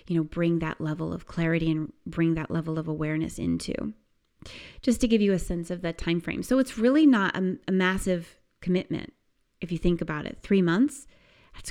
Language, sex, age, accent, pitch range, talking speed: English, female, 30-49, American, 170-230 Hz, 205 wpm